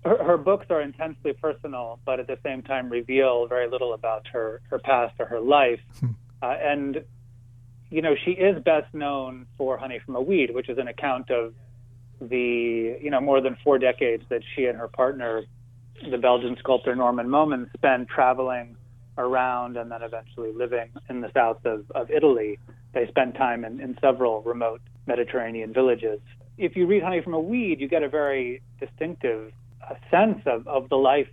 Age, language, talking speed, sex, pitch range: 30-49, English, 185 wpm, male, 120-140 Hz